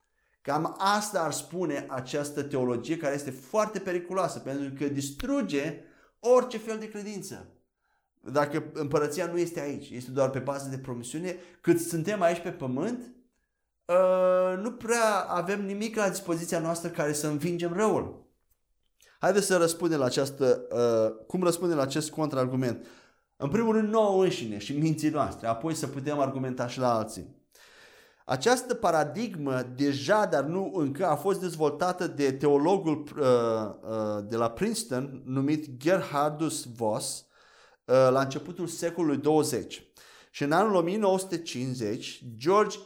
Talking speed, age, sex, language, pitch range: 135 wpm, 30-49, male, Romanian, 135-190 Hz